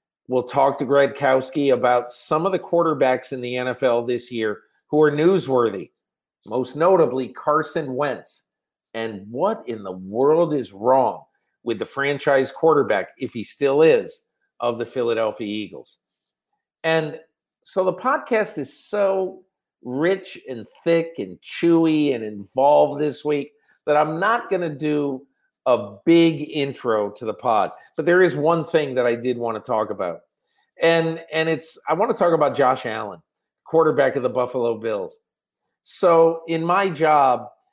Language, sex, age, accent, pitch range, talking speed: English, male, 50-69, American, 130-170 Hz, 155 wpm